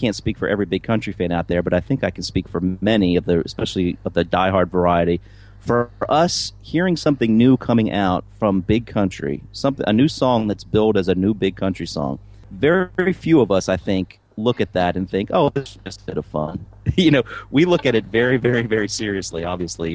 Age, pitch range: 40-59, 95-115 Hz